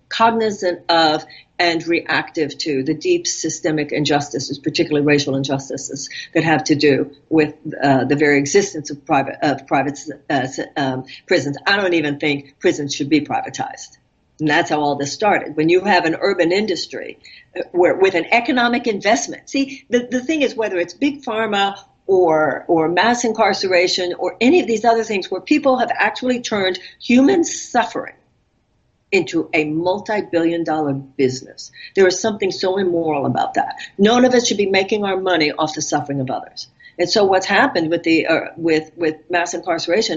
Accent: American